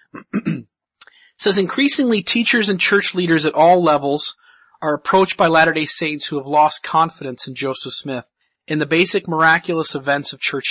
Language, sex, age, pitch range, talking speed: English, male, 30-49, 140-165 Hz, 165 wpm